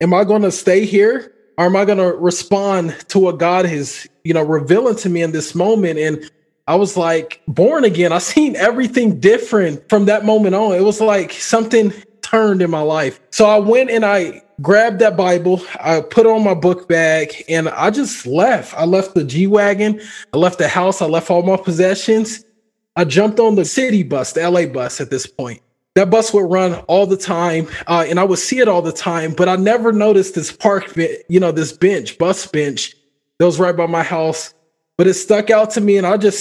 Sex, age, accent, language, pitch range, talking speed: male, 20-39, American, English, 170-210 Hz, 220 wpm